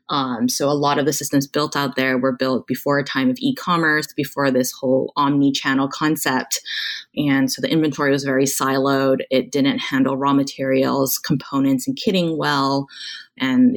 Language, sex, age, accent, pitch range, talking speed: English, female, 20-39, American, 135-160 Hz, 170 wpm